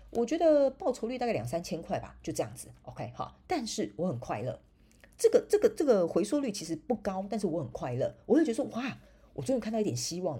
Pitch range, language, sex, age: 135-225 Hz, Chinese, female, 40-59